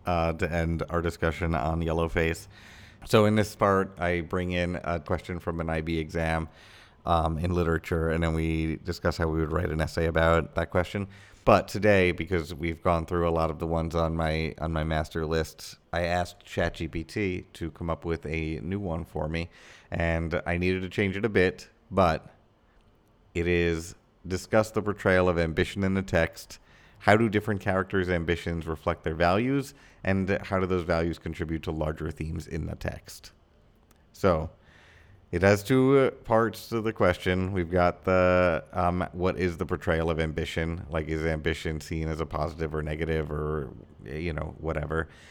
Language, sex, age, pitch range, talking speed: English, male, 30-49, 80-95 Hz, 180 wpm